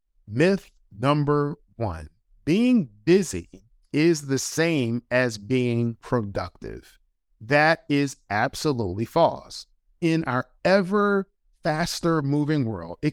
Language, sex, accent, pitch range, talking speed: English, male, American, 125-180 Hz, 100 wpm